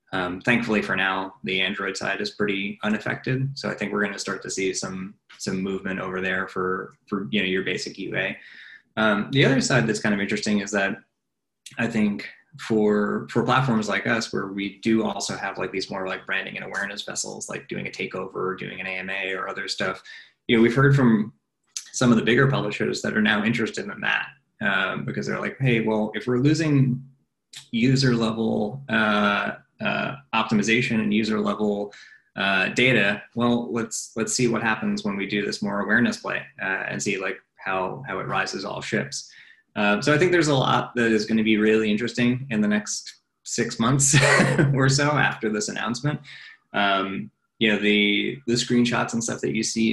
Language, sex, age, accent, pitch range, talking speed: English, male, 20-39, American, 105-120 Hz, 200 wpm